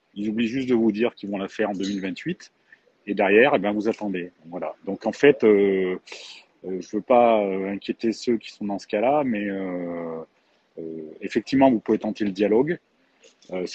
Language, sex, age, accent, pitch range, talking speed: French, male, 40-59, French, 95-120 Hz, 190 wpm